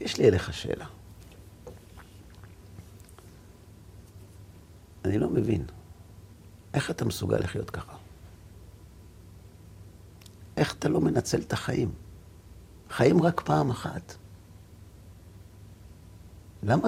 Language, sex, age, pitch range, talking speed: Hebrew, male, 60-79, 90-105 Hz, 80 wpm